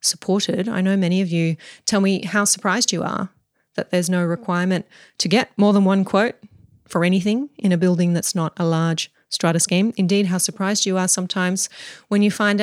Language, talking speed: English, 200 wpm